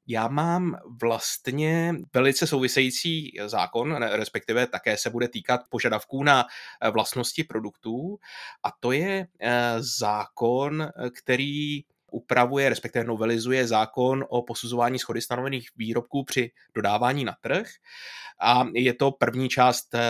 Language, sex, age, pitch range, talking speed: Czech, male, 20-39, 115-130 Hz, 115 wpm